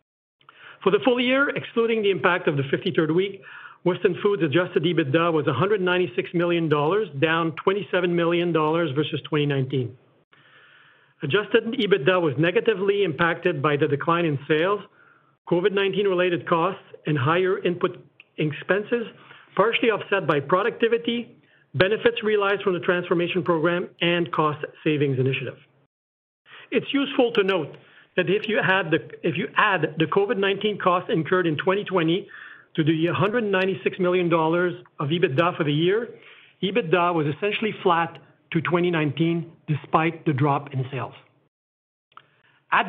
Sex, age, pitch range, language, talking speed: male, 40-59, 160-195 Hz, English, 130 wpm